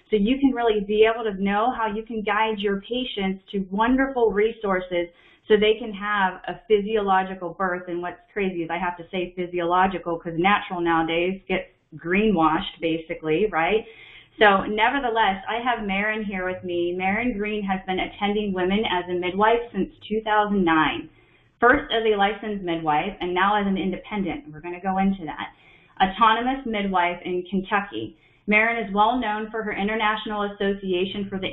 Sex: female